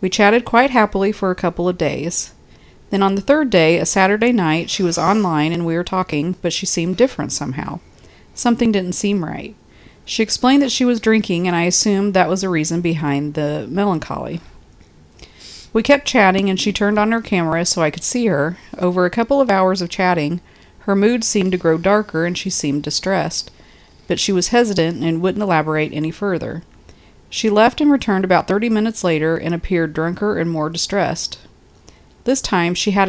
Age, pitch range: 40-59, 160-205 Hz